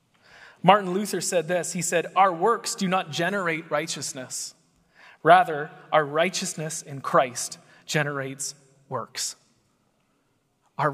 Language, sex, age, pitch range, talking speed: English, male, 20-39, 150-210 Hz, 110 wpm